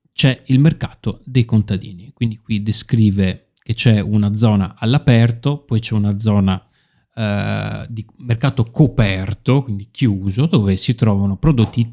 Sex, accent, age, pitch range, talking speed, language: male, native, 30-49, 105-135 Hz, 135 wpm, Italian